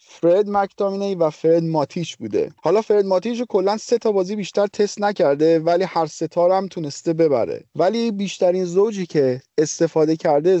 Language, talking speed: Persian, 160 wpm